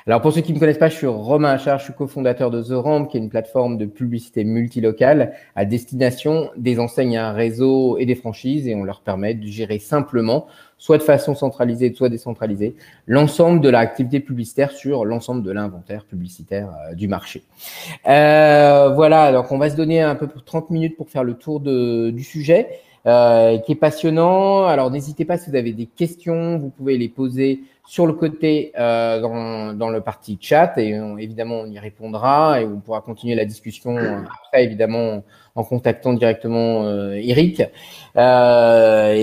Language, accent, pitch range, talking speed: French, French, 115-145 Hz, 190 wpm